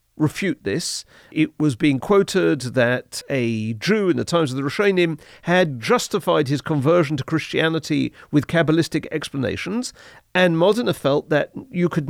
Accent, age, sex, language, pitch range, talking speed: British, 40-59, male, English, 140-180 Hz, 155 wpm